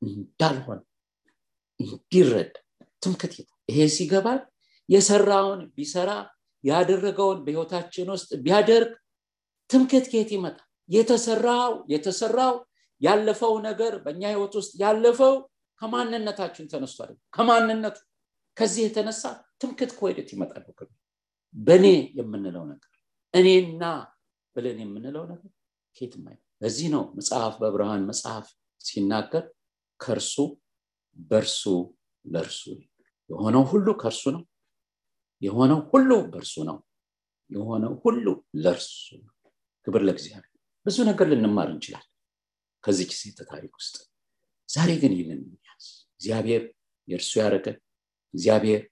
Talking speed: 60 wpm